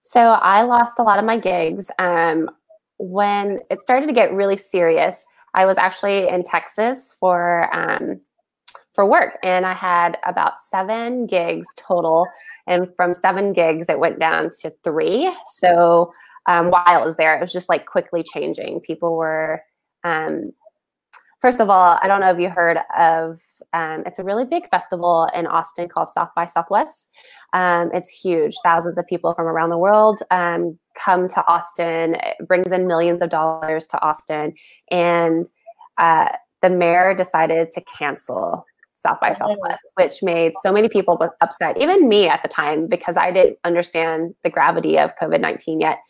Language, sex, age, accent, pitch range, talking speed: English, female, 20-39, American, 165-200 Hz, 170 wpm